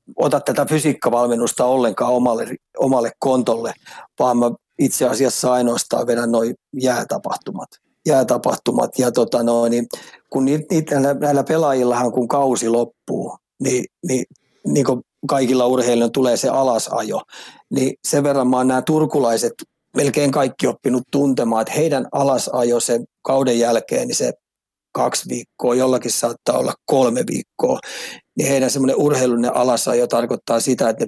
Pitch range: 120-135 Hz